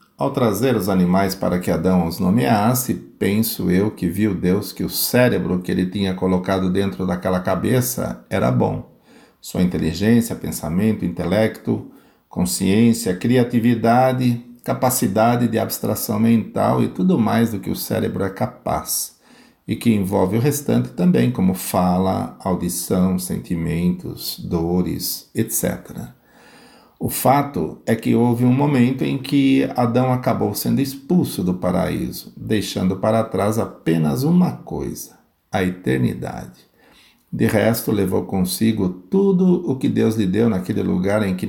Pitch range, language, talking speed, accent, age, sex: 90-120 Hz, Portuguese, 135 wpm, Brazilian, 50-69, male